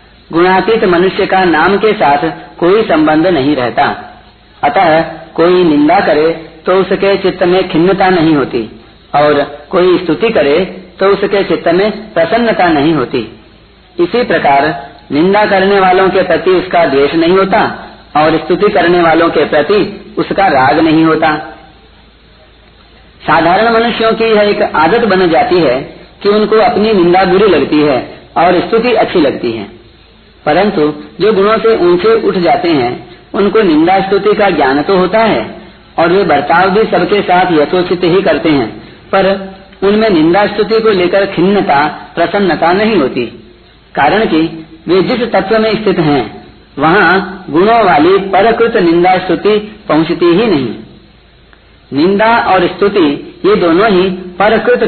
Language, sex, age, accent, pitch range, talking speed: Hindi, female, 40-59, native, 165-215 Hz, 145 wpm